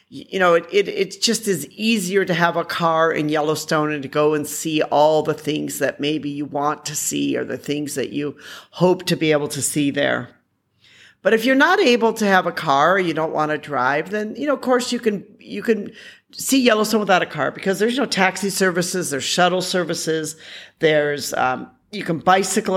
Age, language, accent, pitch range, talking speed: 50-69, English, American, 155-210 Hz, 215 wpm